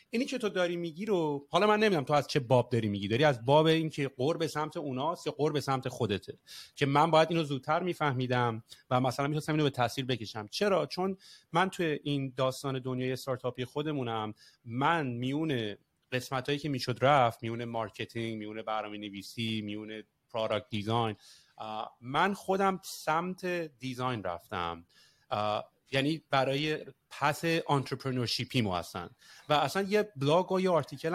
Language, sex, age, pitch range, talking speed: English, male, 30-49, 120-160 Hz, 160 wpm